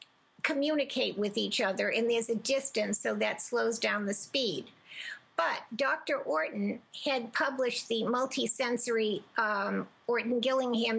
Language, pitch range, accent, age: English, 210-270 Hz, American, 50-69